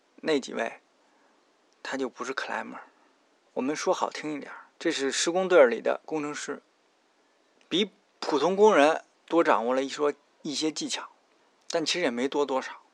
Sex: male